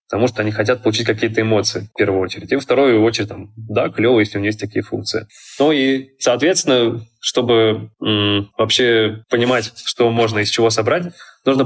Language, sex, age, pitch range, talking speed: Russian, male, 20-39, 105-120 Hz, 185 wpm